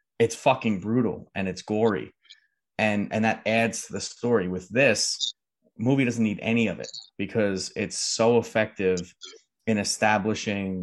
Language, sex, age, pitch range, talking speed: English, male, 30-49, 100-125 Hz, 150 wpm